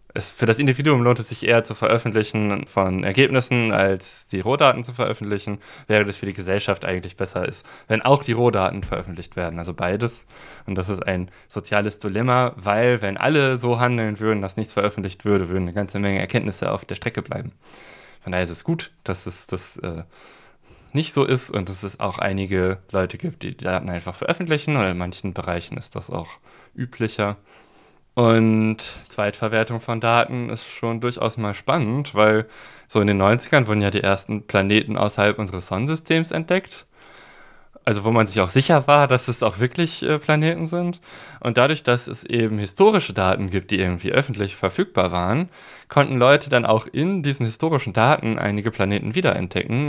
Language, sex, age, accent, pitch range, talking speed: German, male, 20-39, German, 100-125 Hz, 180 wpm